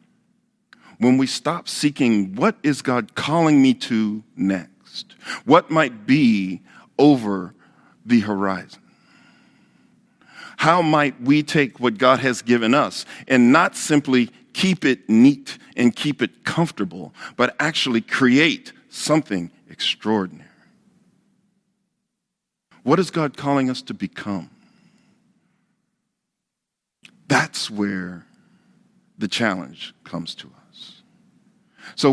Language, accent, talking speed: English, American, 105 wpm